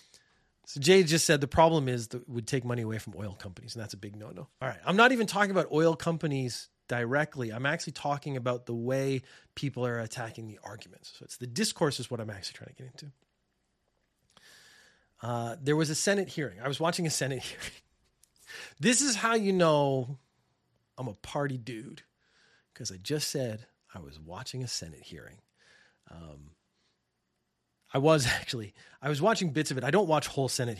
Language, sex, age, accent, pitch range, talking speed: English, male, 30-49, American, 115-150 Hz, 195 wpm